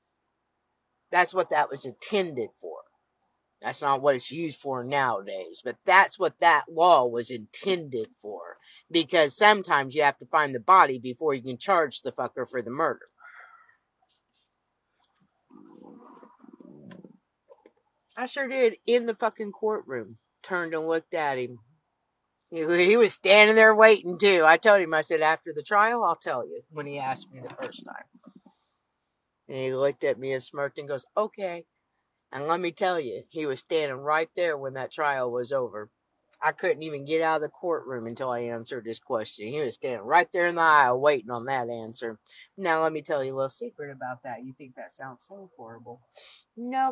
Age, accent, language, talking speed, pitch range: 50-69, American, English, 180 wpm, 125-205 Hz